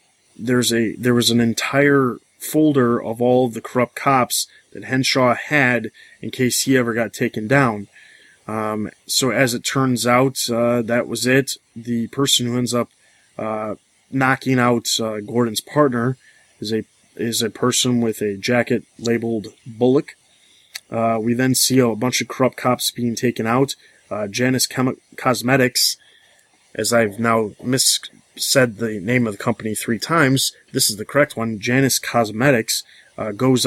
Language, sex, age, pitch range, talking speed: English, male, 20-39, 115-130 Hz, 160 wpm